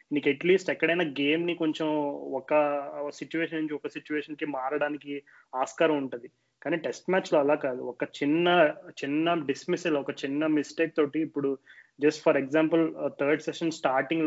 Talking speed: 145 wpm